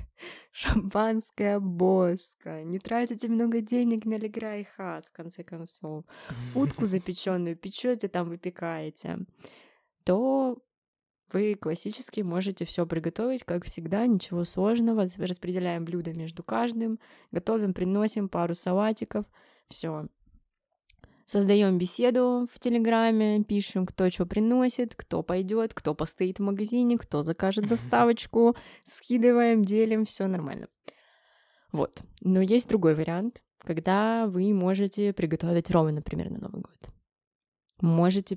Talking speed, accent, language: 115 wpm, native, Russian